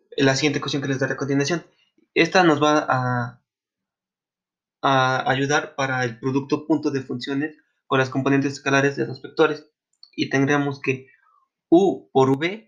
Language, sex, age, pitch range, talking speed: Spanish, male, 20-39, 135-170 Hz, 155 wpm